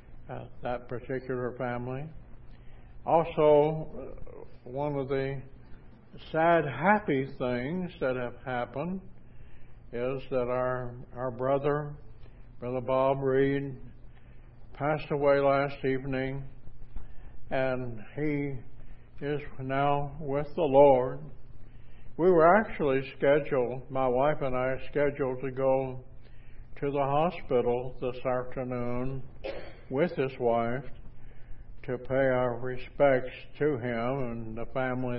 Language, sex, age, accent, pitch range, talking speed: English, male, 60-79, American, 120-140 Hz, 105 wpm